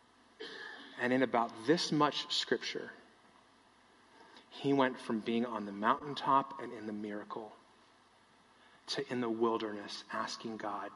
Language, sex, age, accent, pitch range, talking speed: English, male, 30-49, American, 115-145 Hz, 125 wpm